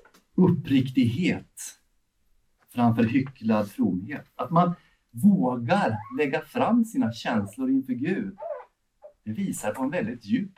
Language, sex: Swedish, male